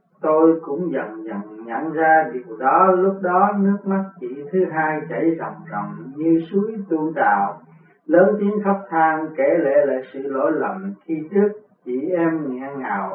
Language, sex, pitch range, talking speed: Vietnamese, male, 145-180 Hz, 175 wpm